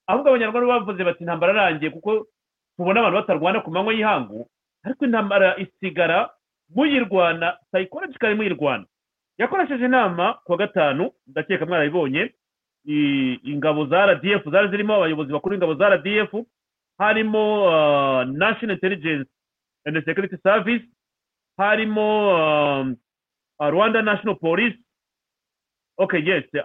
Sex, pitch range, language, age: male, 155-210 Hz, English, 40-59